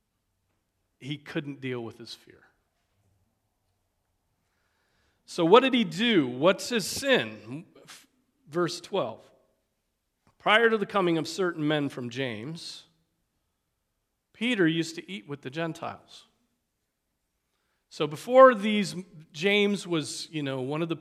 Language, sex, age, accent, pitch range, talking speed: English, male, 40-59, American, 130-175 Hz, 120 wpm